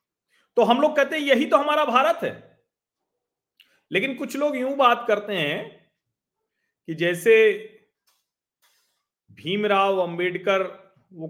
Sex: male